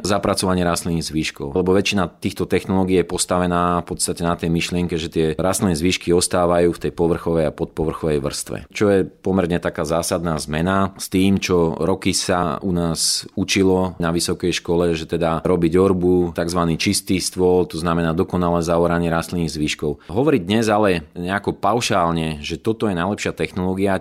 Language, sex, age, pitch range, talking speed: Slovak, male, 30-49, 85-100 Hz, 160 wpm